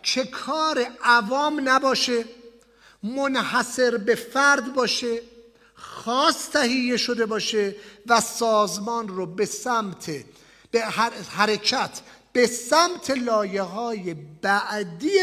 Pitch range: 200-255 Hz